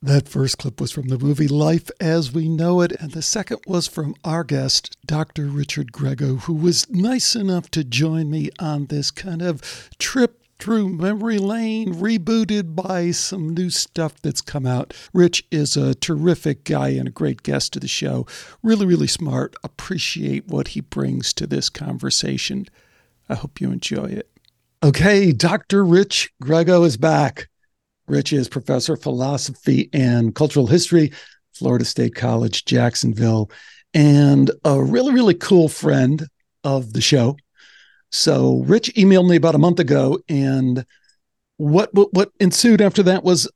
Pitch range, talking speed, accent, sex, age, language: 135-185 Hz, 160 wpm, American, male, 60-79, English